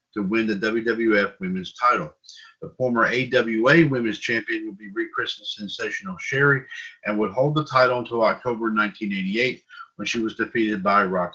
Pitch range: 105-165 Hz